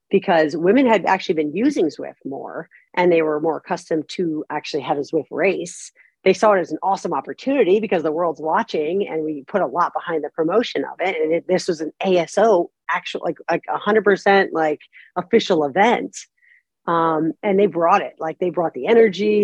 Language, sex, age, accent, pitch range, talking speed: English, female, 40-59, American, 170-210 Hz, 200 wpm